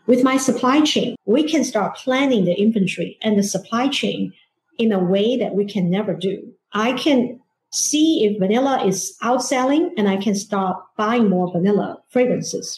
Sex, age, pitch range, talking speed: female, 50-69, 190-255 Hz, 175 wpm